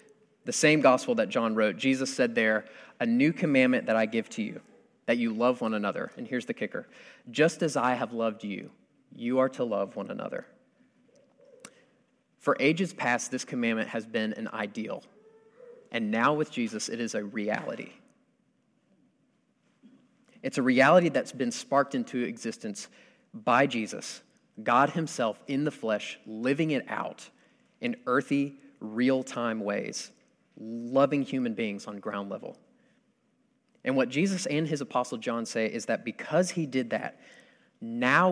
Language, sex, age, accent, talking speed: English, male, 30-49, American, 155 wpm